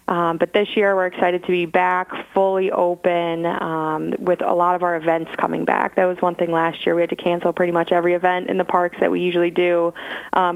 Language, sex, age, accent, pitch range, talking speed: English, female, 20-39, American, 175-190 Hz, 240 wpm